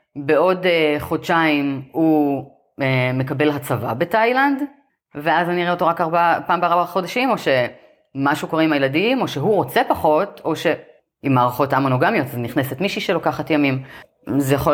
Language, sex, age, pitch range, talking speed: Hebrew, female, 30-49, 125-175 Hz, 155 wpm